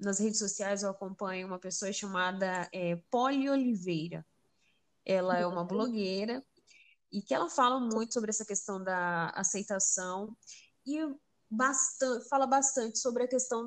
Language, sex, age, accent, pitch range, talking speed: Portuguese, female, 10-29, Brazilian, 185-250 Hz, 140 wpm